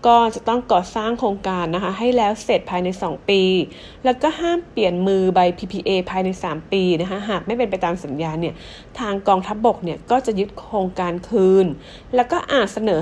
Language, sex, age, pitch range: English, female, 30-49, 185-240 Hz